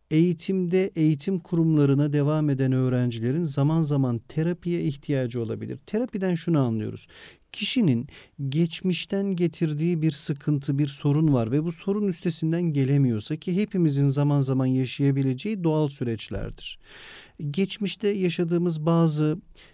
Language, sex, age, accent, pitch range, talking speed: Turkish, male, 40-59, native, 140-180 Hz, 115 wpm